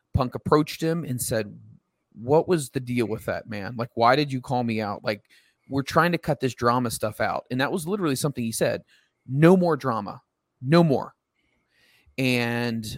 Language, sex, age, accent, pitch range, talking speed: English, male, 30-49, American, 115-150 Hz, 190 wpm